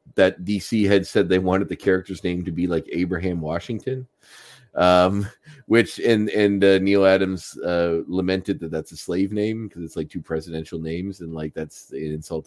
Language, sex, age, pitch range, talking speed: English, male, 30-49, 80-95 Hz, 190 wpm